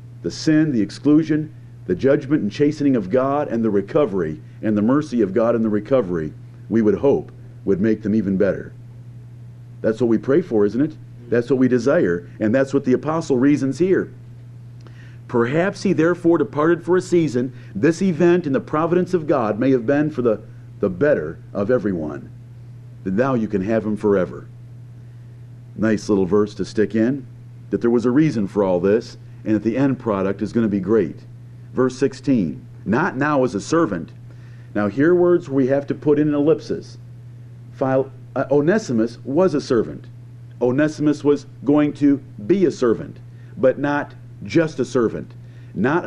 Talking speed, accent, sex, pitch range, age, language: 180 wpm, American, male, 120-145 Hz, 50-69, English